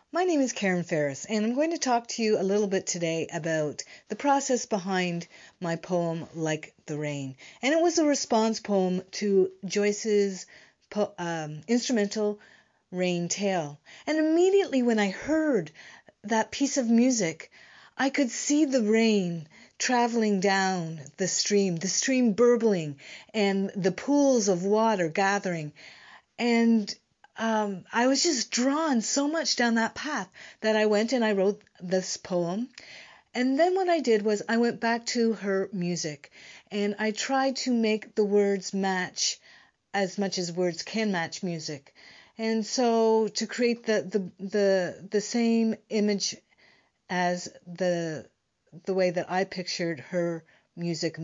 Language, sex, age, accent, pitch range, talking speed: English, female, 40-59, American, 180-230 Hz, 150 wpm